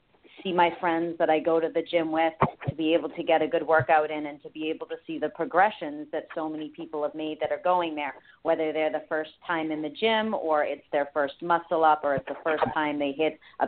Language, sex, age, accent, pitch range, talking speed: English, female, 40-59, American, 155-190 Hz, 260 wpm